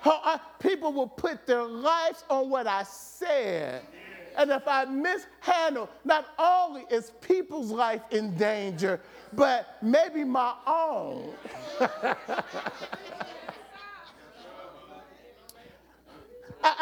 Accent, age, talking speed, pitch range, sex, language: American, 40-59, 95 wpm, 220-300 Hz, male, English